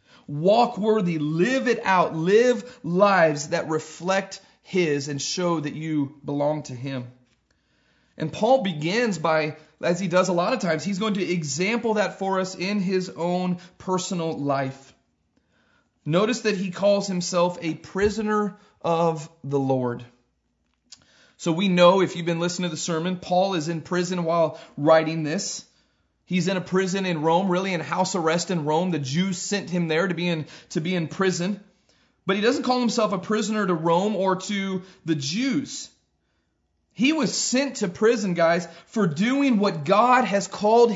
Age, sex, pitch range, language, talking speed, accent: 30-49, male, 165-215 Hz, English, 165 wpm, American